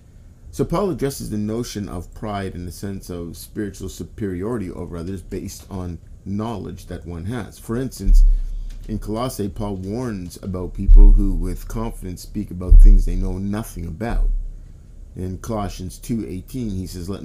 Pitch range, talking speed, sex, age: 90-105 Hz, 155 wpm, male, 50-69